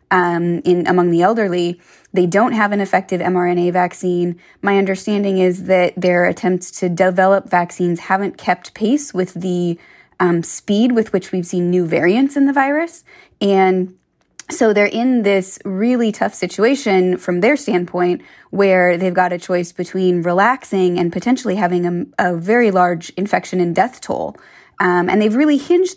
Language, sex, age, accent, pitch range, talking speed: English, female, 20-39, American, 175-205 Hz, 165 wpm